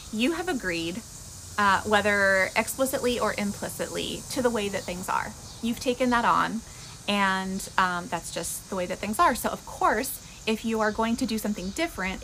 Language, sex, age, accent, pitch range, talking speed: English, female, 20-39, American, 190-255 Hz, 185 wpm